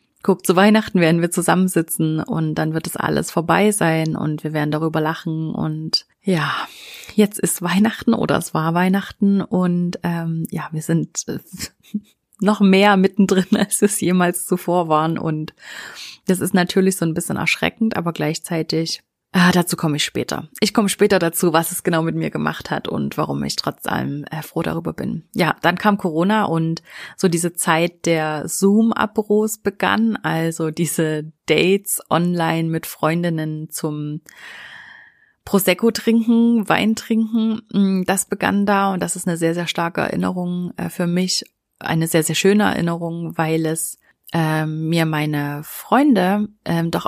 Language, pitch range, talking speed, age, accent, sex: German, 160-195 Hz, 155 wpm, 30-49, German, female